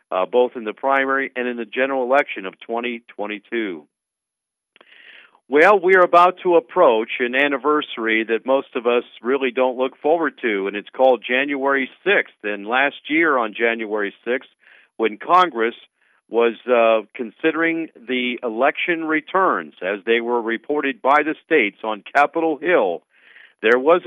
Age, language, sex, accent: 50-69, English, male, American